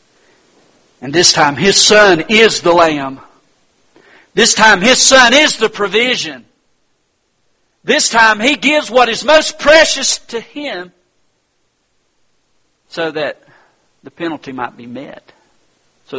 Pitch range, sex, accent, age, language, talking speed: 135-190 Hz, male, American, 50-69, English, 120 wpm